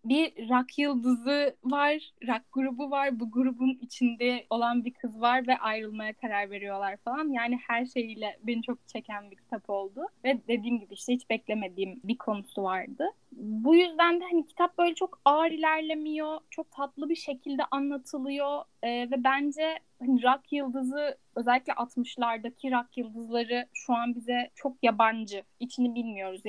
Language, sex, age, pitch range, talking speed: Turkish, female, 10-29, 235-290 Hz, 155 wpm